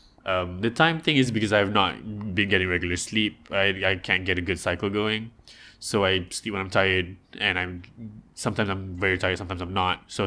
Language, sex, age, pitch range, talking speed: English, male, 20-39, 90-110 Hz, 210 wpm